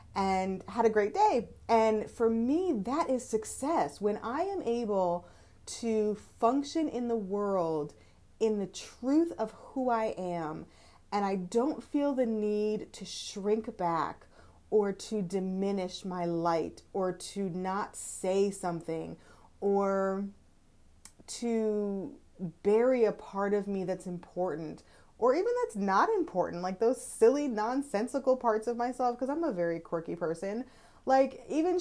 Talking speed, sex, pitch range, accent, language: 140 wpm, female, 180-245 Hz, American, English